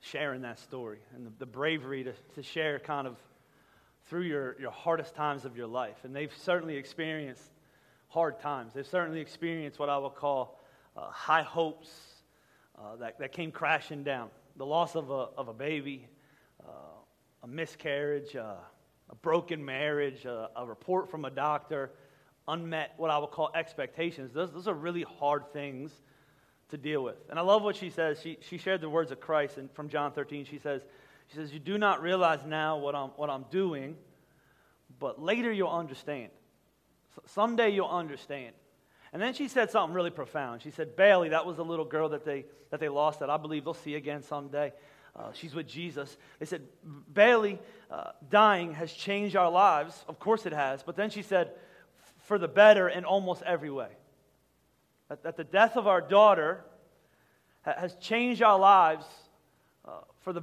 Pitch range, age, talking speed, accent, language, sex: 145-180 Hz, 30-49, 185 wpm, American, English, male